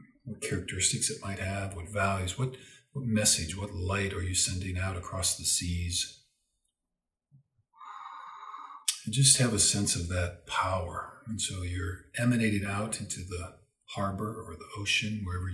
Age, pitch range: 50-69, 90-110 Hz